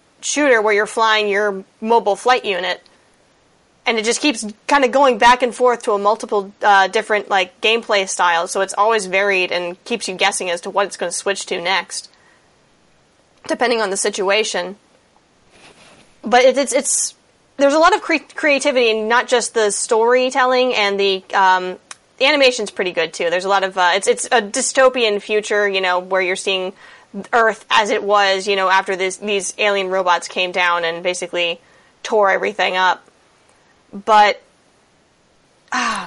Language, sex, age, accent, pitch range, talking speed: English, female, 20-39, American, 195-250 Hz, 175 wpm